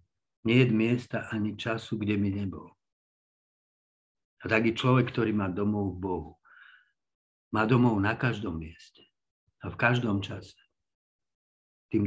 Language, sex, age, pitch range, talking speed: Slovak, male, 50-69, 100-120 Hz, 130 wpm